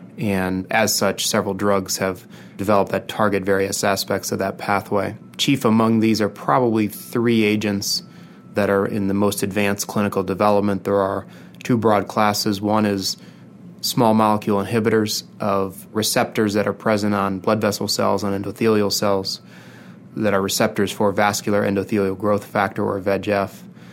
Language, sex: English, male